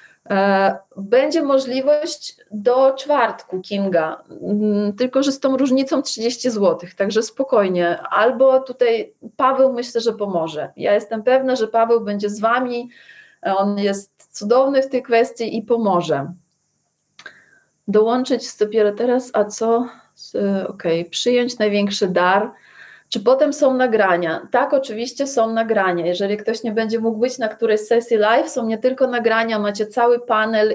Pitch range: 205-245 Hz